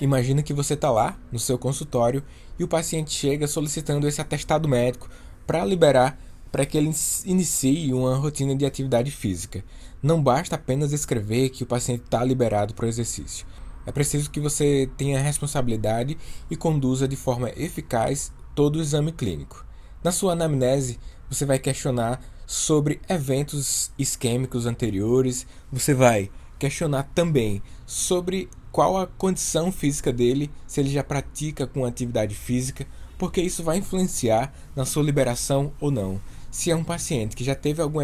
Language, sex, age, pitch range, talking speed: Portuguese, male, 20-39, 125-155 Hz, 155 wpm